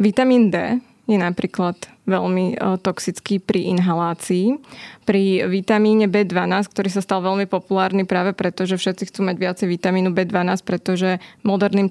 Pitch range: 185-205 Hz